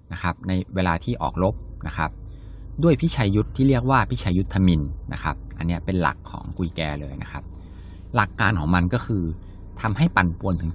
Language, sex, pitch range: Thai, male, 85-110 Hz